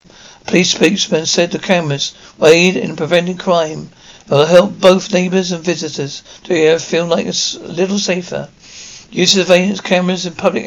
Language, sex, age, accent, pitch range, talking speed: English, male, 60-79, British, 165-195 Hz, 175 wpm